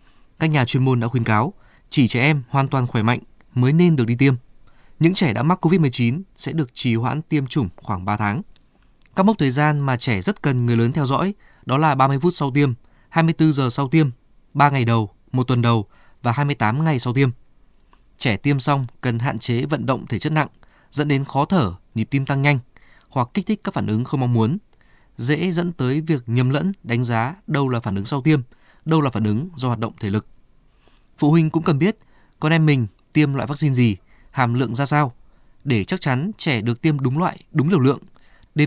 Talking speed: 225 wpm